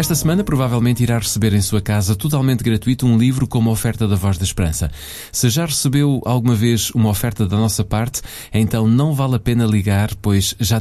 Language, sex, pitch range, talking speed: Portuguese, male, 105-130 Hz, 200 wpm